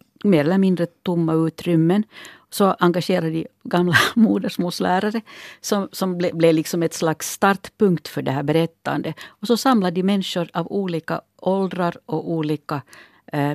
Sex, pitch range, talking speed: female, 155-185 Hz, 145 wpm